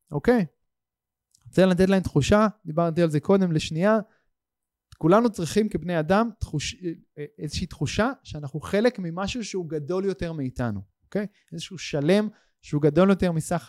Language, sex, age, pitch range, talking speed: Hebrew, male, 30-49, 145-210 Hz, 145 wpm